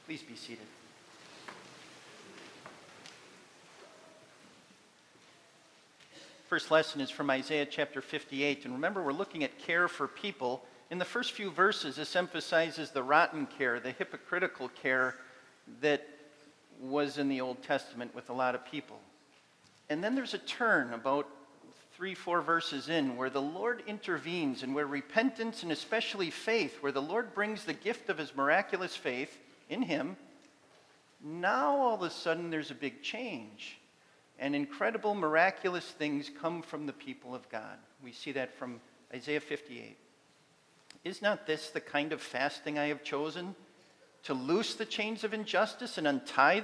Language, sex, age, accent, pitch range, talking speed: English, male, 50-69, American, 145-220 Hz, 150 wpm